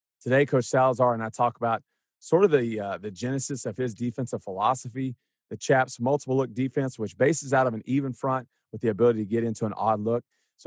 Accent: American